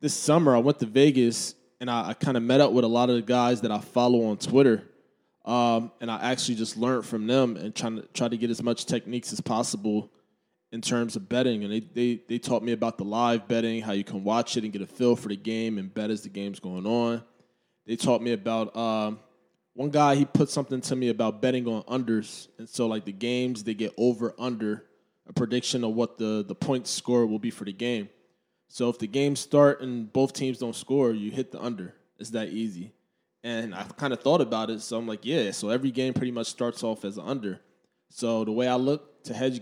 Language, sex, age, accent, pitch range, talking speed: English, male, 20-39, American, 110-125 Hz, 240 wpm